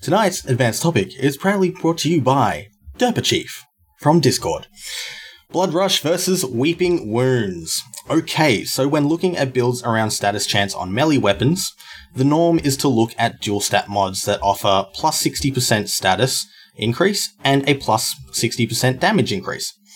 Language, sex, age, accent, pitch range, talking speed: English, male, 20-39, Australian, 110-165 Hz, 155 wpm